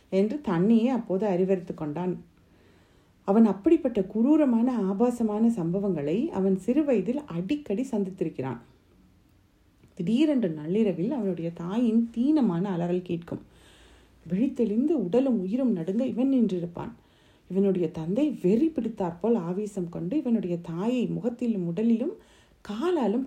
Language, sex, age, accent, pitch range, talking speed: Tamil, female, 30-49, native, 175-250 Hz, 100 wpm